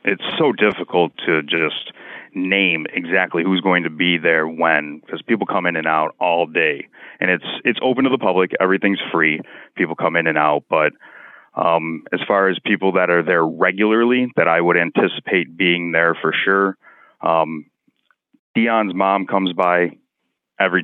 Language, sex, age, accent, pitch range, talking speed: English, male, 30-49, American, 85-100 Hz, 170 wpm